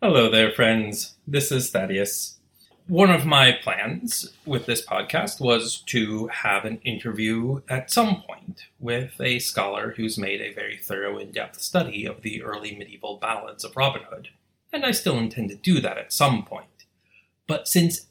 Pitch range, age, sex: 110-150 Hz, 30-49, male